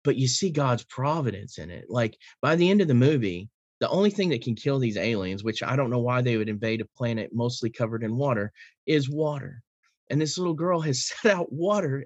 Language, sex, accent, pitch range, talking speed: English, male, American, 120-175 Hz, 230 wpm